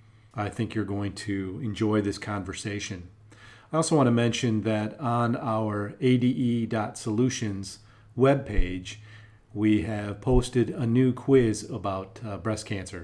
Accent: American